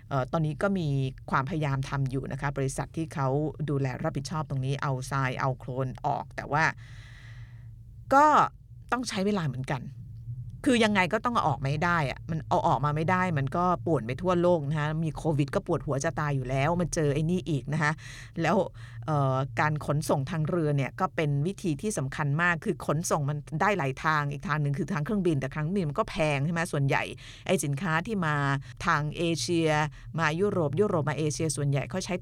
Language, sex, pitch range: Thai, female, 135-170 Hz